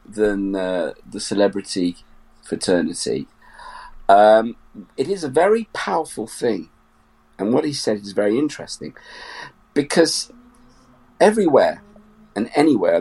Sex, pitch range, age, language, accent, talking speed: male, 75-115 Hz, 50-69, English, British, 105 wpm